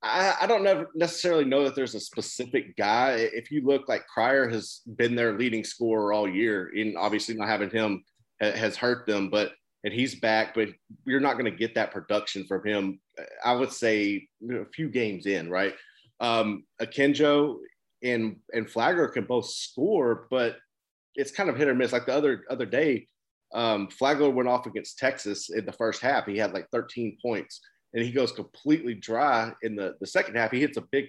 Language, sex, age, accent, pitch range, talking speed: English, male, 30-49, American, 110-140 Hz, 195 wpm